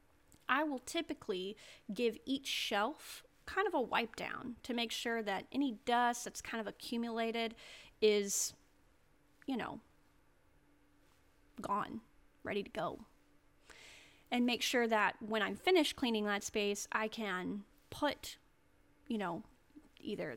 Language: English